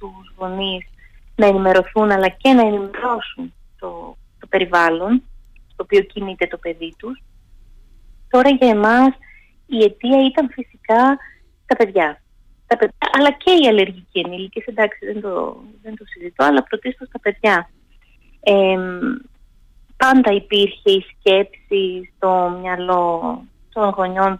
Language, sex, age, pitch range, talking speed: Greek, female, 20-39, 180-220 Hz, 120 wpm